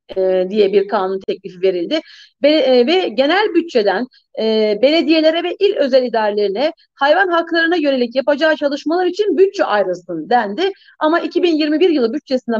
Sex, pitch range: female, 250-360 Hz